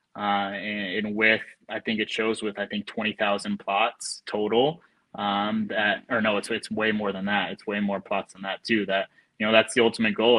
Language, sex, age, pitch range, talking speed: English, male, 20-39, 105-120 Hz, 225 wpm